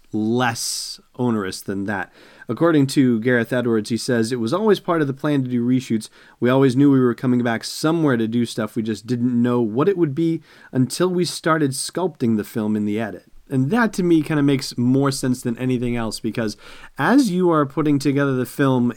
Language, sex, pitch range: English, male, 110-135 Hz